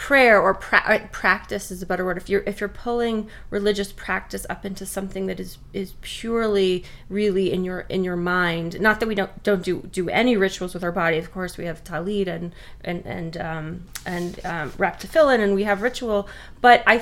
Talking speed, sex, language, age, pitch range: 210 wpm, female, English, 20-39, 185-220 Hz